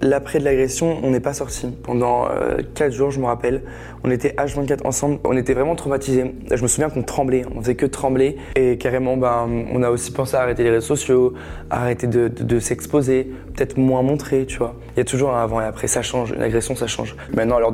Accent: French